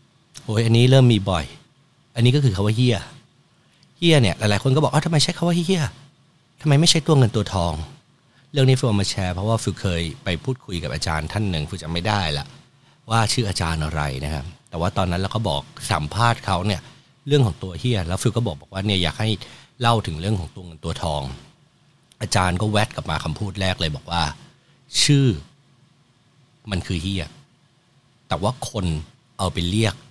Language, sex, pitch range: English, male, 95-140 Hz